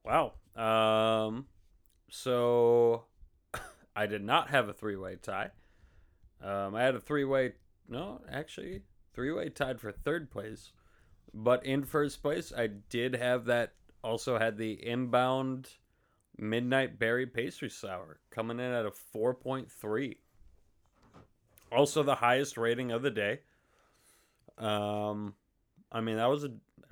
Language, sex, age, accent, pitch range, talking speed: English, male, 30-49, American, 105-125 Hz, 125 wpm